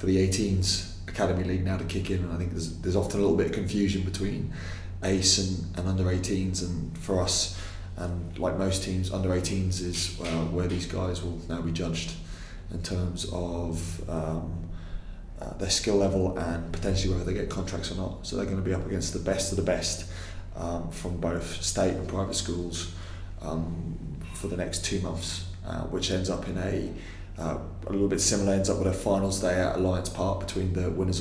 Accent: British